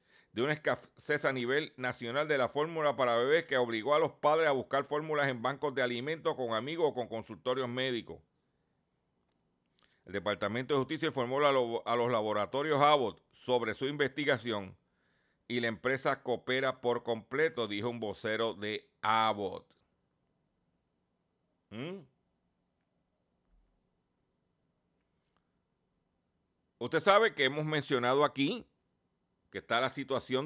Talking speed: 120 wpm